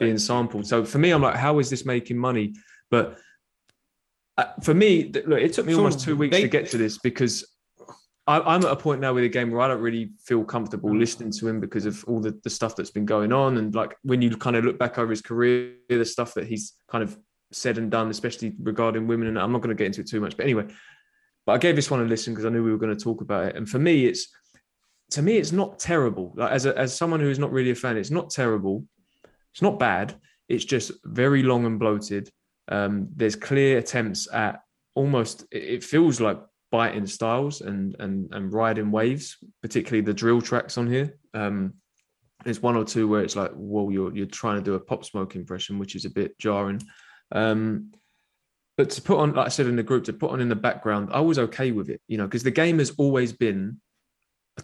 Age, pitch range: 20-39, 110-135 Hz